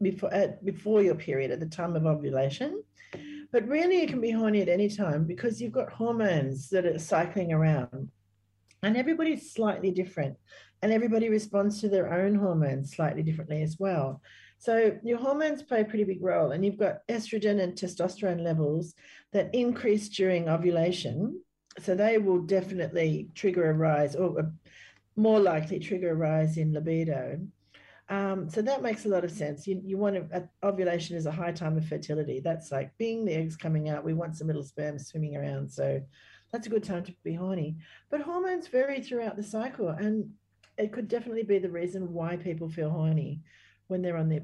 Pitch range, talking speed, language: 160-215 Hz, 190 wpm, English